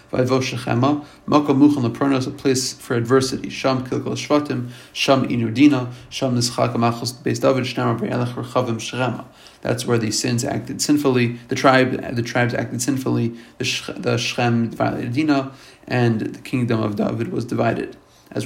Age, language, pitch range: 30-49, English, 120-135 Hz